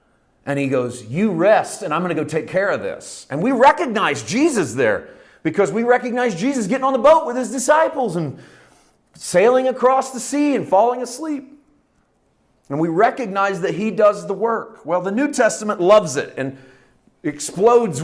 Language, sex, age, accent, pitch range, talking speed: English, male, 40-59, American, 130-200 Hz, 175 wpm